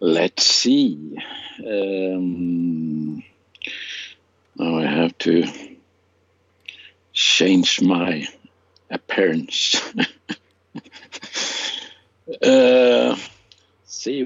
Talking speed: 50 wpm